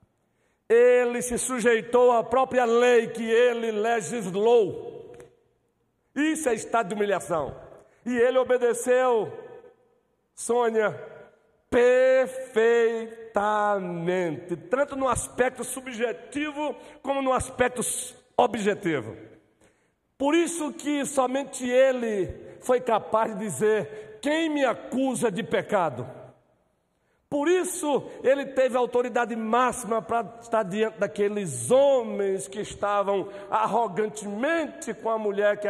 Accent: Brazilian